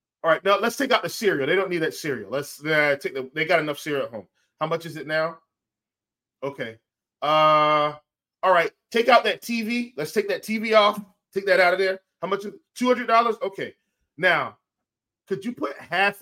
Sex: male